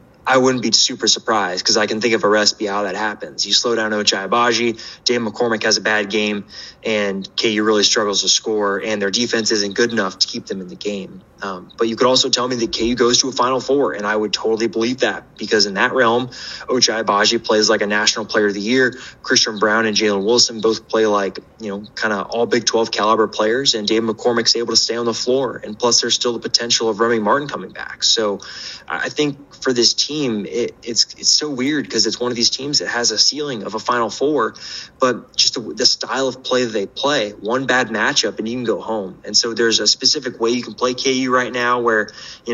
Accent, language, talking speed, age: American, English, 245 wpm, 20-39